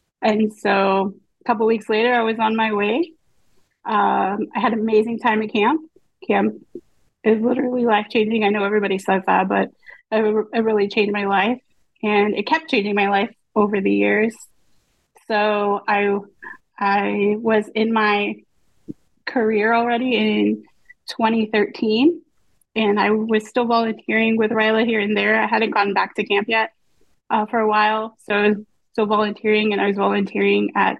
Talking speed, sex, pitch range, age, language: 165 wpm, female, 210-240 Hz, 20-39, English